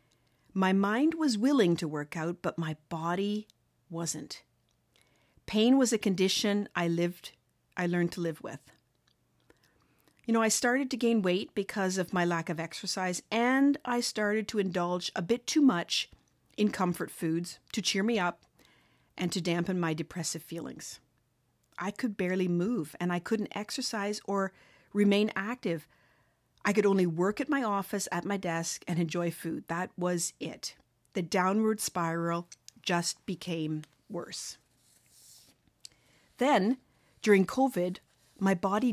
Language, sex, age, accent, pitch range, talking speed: English, female, 40-59, American, 170-215 Hz, 145 wpm